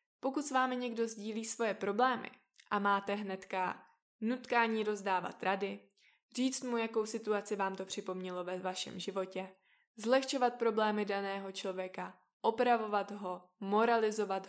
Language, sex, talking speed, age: Czech, female, 125 wpm, 20-39